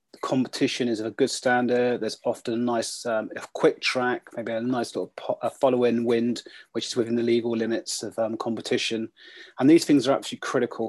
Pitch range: 110-125 Hz